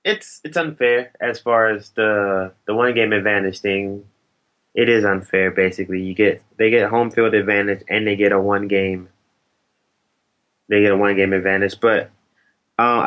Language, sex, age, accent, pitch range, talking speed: English, male, 20-39, American, 100-110 Hz, 170 wpm